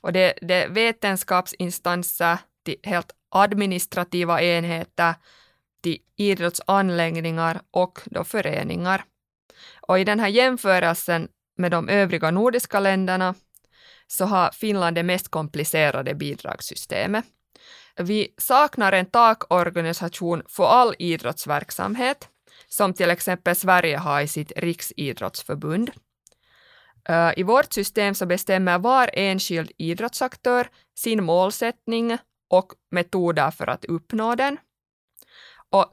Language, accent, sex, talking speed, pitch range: Swedish, Finnish, female, 105 wpm, 170-215 Hz